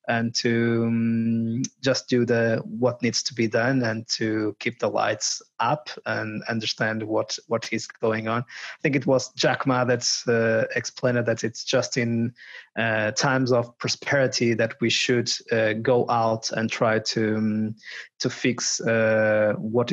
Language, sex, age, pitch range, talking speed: English, male, 20-39, 115-130 Hz, 165 wpm